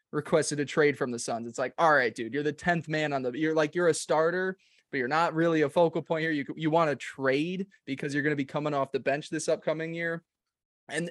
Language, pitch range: English, 140-175 Hz